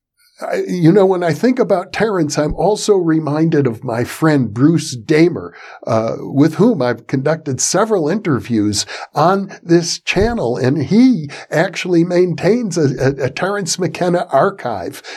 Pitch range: 135-185 Hz